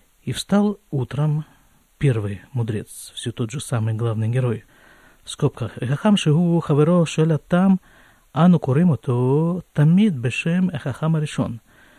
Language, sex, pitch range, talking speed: Russian, male, 125-175 Hz, 90 wpm